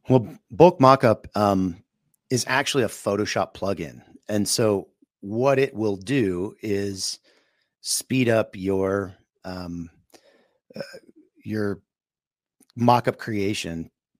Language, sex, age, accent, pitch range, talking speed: English, male, 40-59, American, 95-125 Hz, 100 wpm